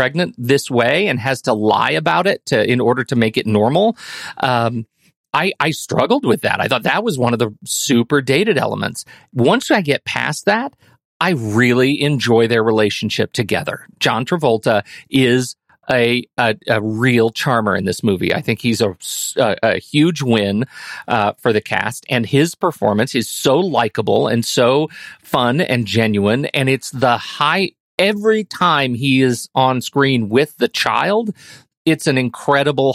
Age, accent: 40-59, American